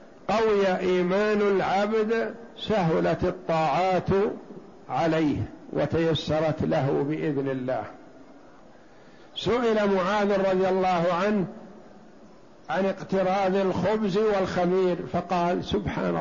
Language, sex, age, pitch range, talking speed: Arabic, male, 60-79, 170-200 Hz, 80 wpm